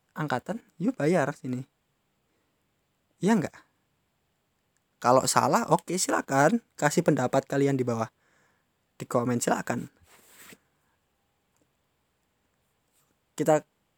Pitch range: 125-160 Hz